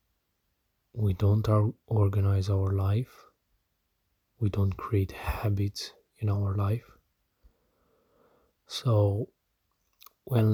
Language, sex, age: English, male, 30-49